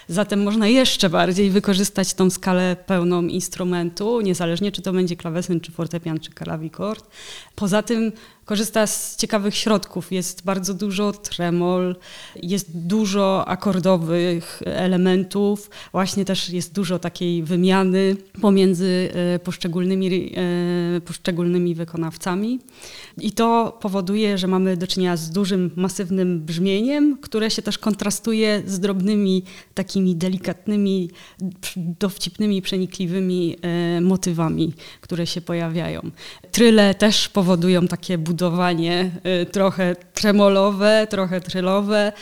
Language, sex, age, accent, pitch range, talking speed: Polish, female, 20-39, native, 175-205 Hz, 110 wpm